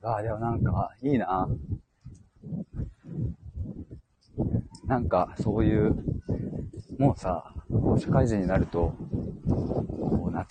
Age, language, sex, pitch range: 40-59, Japanese, male, 85-110 Hz